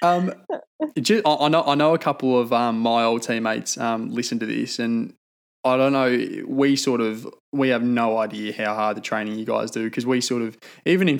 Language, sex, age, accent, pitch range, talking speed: English, male, 20-39, Australian, 115-140 Hz, 220 wpm